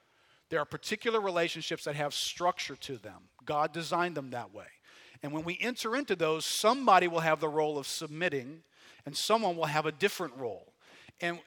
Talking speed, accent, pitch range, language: 185 wpm, American, 155-215 Hz, English